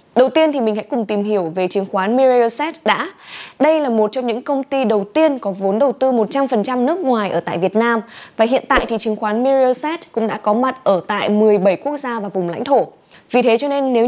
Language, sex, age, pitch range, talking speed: Vietnamese, female, 20-39, 210-265 Hz, 245 wpm